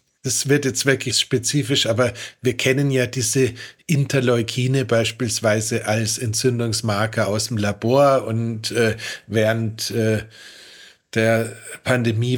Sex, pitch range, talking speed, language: male, 110-130 Hz, 110 wpm, German